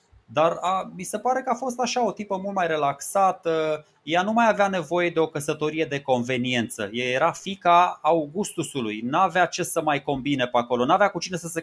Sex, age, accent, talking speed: male, 20-39, native, 205 wpm